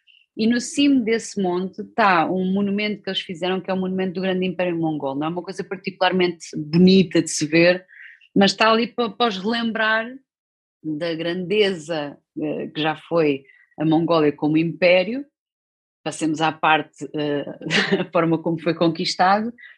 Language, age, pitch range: Portuguese, 20-39, 170-230 Hz